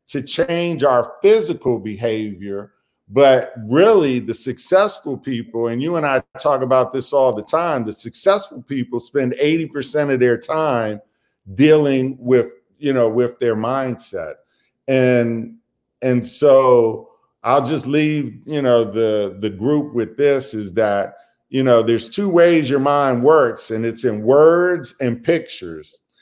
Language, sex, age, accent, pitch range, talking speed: English, male, 40-59, American, 120-155 Hz, 145 wpm